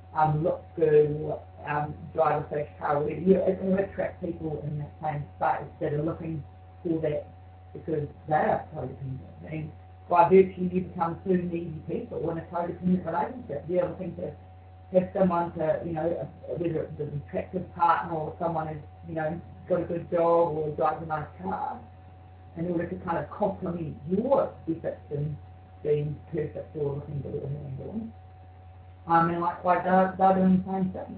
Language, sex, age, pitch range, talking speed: English, female, 40-59, 145-185 Hz, 190 wpm